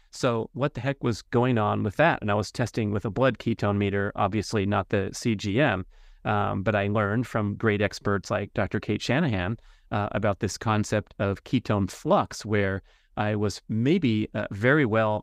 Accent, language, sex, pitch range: American, English, male, 100-115 Hz